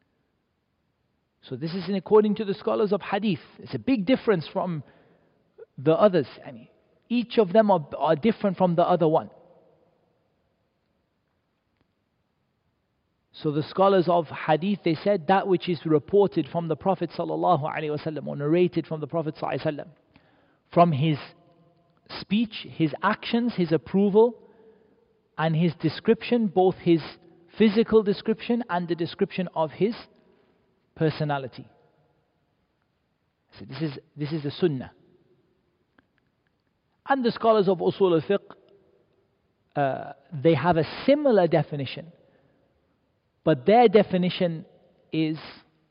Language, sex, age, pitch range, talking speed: English, male, 40-59, 160-200 Hz, 115 wpm